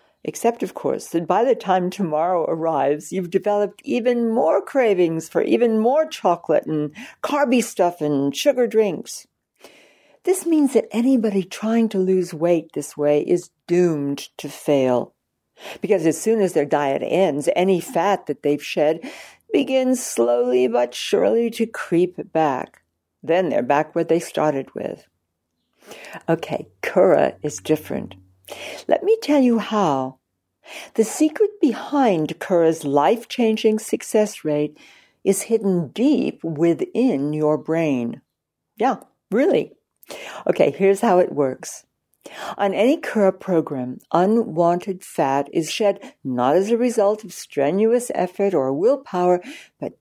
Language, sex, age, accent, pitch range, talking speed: English, female, 60-79, American, 155-230 Hz, 135 wpm